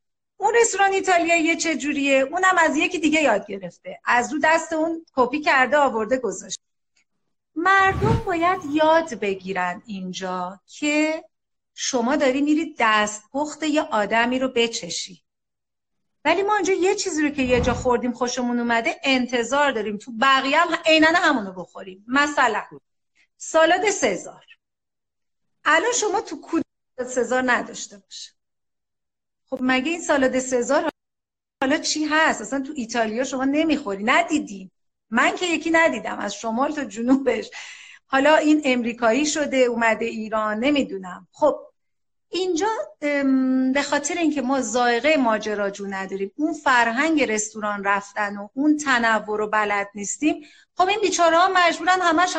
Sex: female